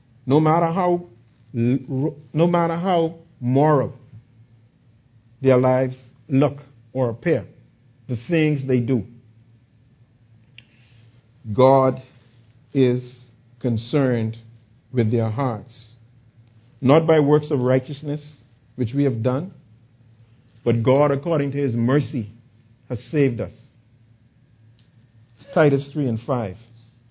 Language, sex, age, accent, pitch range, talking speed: English, male, 50-69, American, 115-140 Hz, 95 wpm